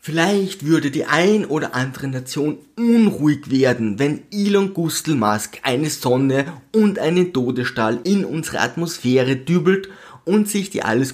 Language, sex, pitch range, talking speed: German, male, 115-170 Hz, 135 wpm